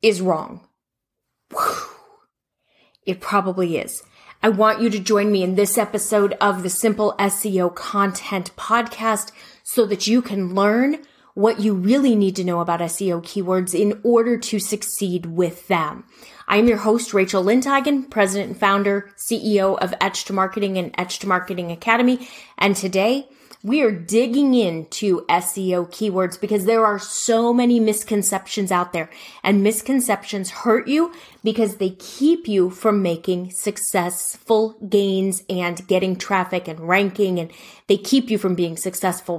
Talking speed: 150 wpm